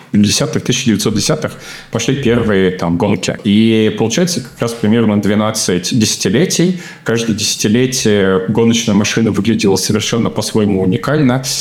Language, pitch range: Russian, 100-115 Hz